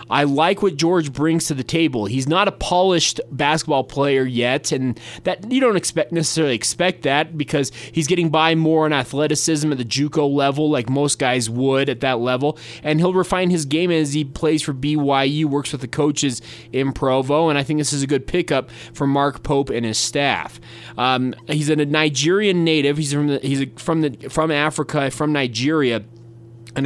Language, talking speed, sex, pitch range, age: English, 190 wpm, male, 130-155 Hz, 20-39